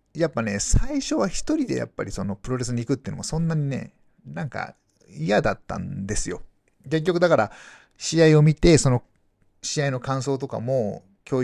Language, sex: Japanese, male